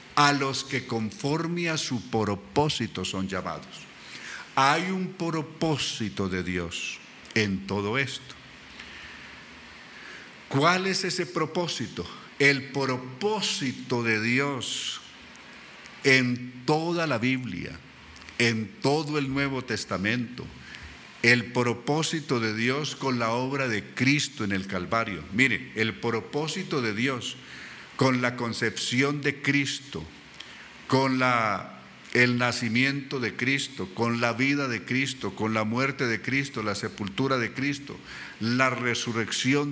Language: Spanish